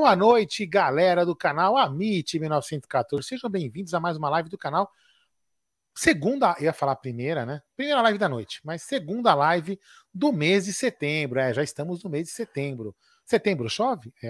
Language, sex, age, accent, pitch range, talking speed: Portuguese, male, 40-59, Brazilian, 145-210 Hz, 175 wpm